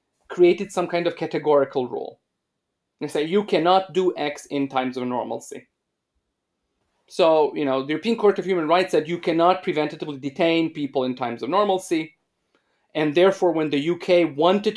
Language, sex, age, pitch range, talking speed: English, male, 30-49, 145-185 Hz, 165 wpm